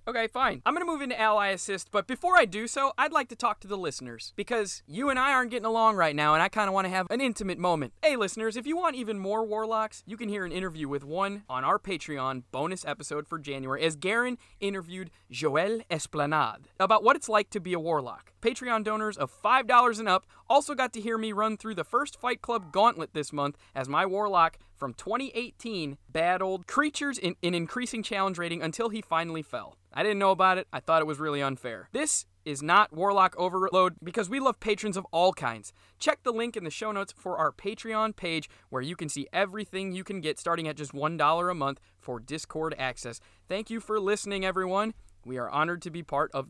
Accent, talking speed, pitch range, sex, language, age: American, 225 wpm, 150-220 Hz, male, English, 30-49